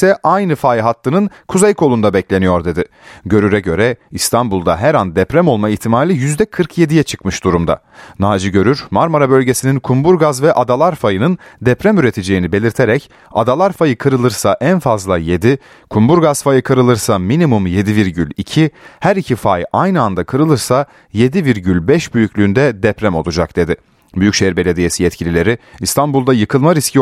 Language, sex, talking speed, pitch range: Turkish, male, 125 wpm, 100-150 Hz